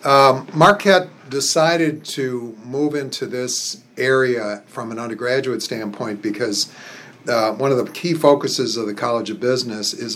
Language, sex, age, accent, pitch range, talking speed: English, male, 50-69, American, 110-135 Hz, 150 wpm